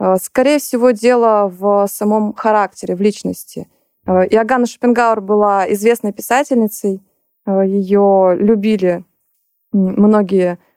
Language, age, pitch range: Russian, 20-39, 190-225 Hz